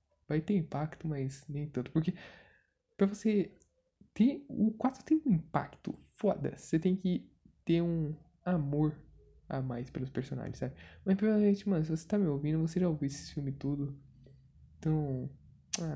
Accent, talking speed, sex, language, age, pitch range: Brazilian, 160 wpm, male, Portuguese, 10-29, 135-160 Hz